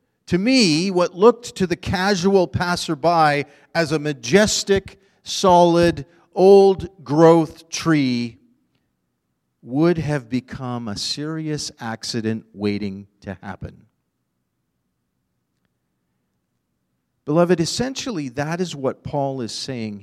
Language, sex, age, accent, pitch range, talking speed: English, male, 40-59, American, 130-210 Hz, 95 wpm